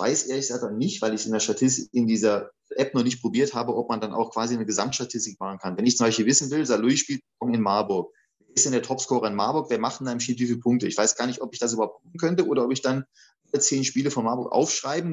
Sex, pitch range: male, 115-135 Hz